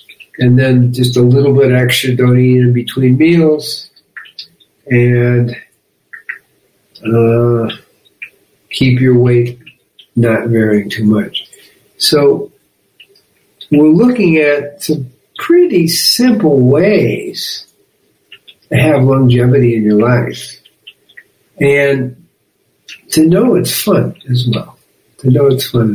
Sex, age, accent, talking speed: male, 60-79, American, 105 wpm